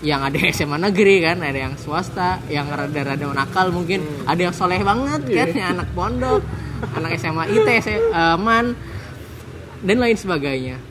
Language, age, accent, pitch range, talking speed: Indonesian, 20-39, native, 135-175 Hz, 155 wpm